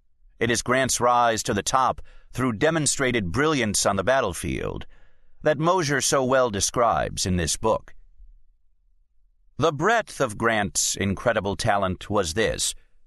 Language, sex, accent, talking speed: English, male, American, 135 wpm